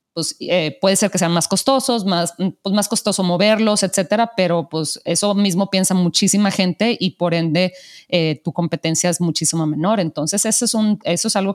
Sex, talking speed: female, 190 wpm